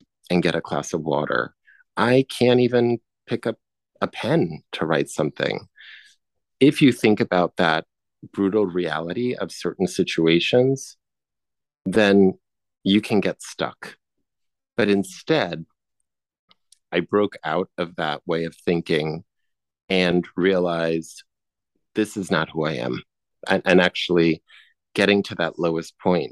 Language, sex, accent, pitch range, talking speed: English, male, American, 85-105 Hz, 130 wpm